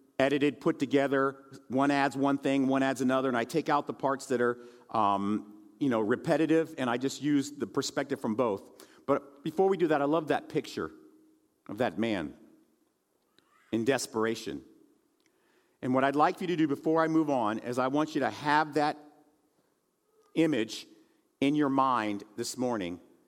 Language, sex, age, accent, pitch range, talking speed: English, male, 50-69, American, 135-195 Hz, 175 wpm